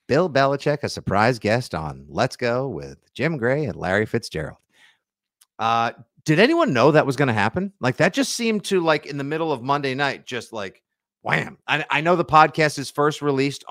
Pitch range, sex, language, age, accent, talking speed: 110-160 Hz, male, English, 40-59, American, 200 wpm